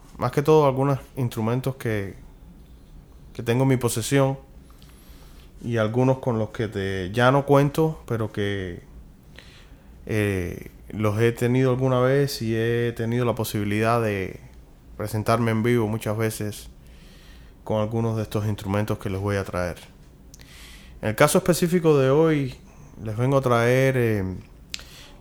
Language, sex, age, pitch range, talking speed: Spanish, male, 20-39, 105-130 Hz, 140 wpm